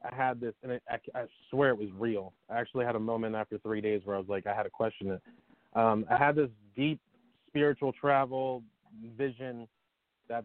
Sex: male